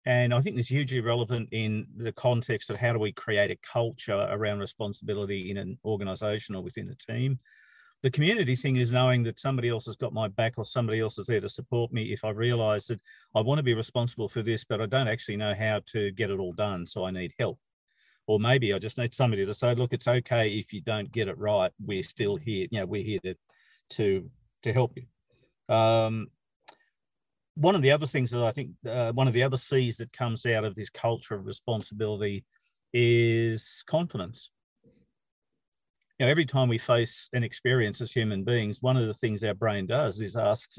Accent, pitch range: Australian, 105-125 Hz